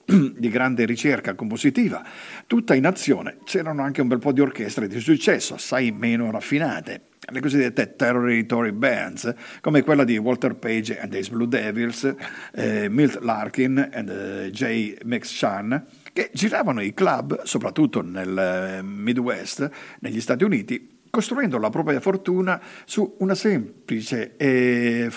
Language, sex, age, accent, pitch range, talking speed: Italian, male, 50-69, native, 120-190 Hz, 135 wpm